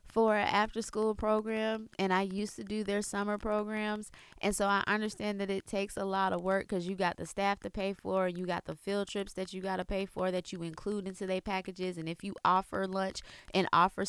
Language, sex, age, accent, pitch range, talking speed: English, female, 20-39, American, 170-200 Hz, 240 wpm